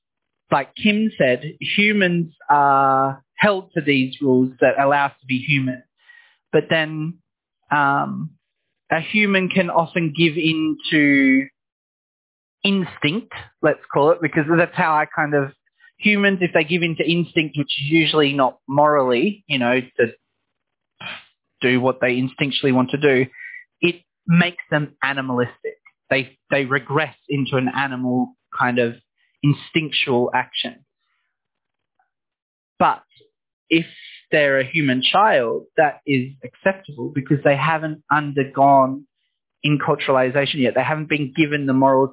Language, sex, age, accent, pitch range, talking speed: English, male, 20-39, Australian, 135-165 Hz, 130 wpm